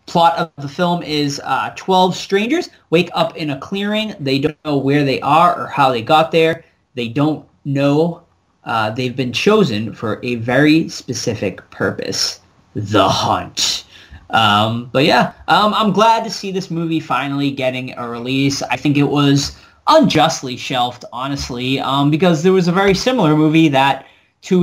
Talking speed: 170 wpm